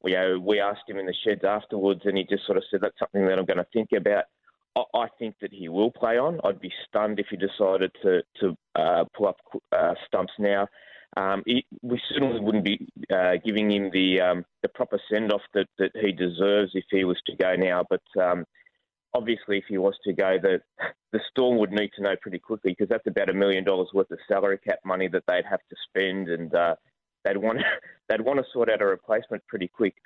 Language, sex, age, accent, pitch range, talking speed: English, male, 20-39, Australian, 95-110 Hz, 220 wpm